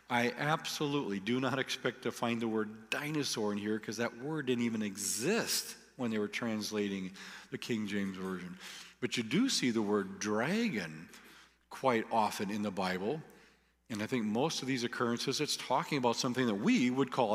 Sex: male